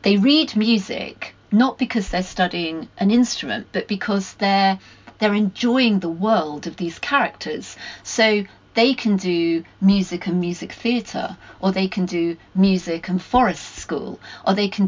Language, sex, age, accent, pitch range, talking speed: English, female, 30-49, British, 175-215 Hz, 155 wpm